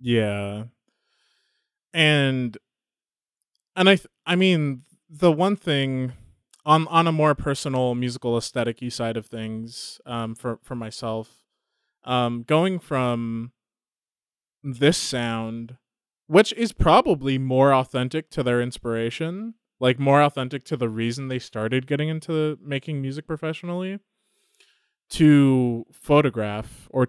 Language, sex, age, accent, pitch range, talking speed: English, male, 20-39, American, 120-150 Hz, 115 wpm